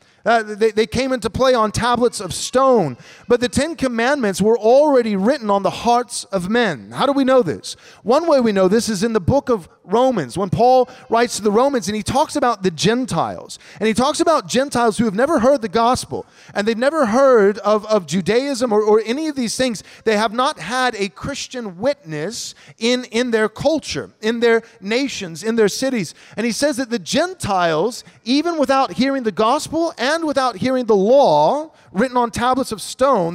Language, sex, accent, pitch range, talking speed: English, male, American, 215-270 Hz, 200 wpm